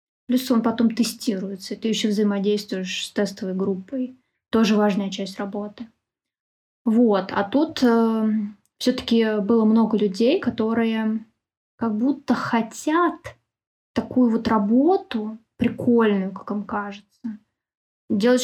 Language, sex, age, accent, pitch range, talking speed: Russian, female, 20-39, native, 205-245 Hz, 115 wpm